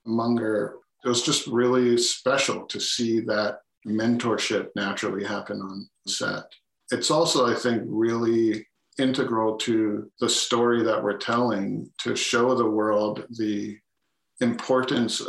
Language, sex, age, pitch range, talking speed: English, male, 50-69, 105-120 Hz, 125 wpm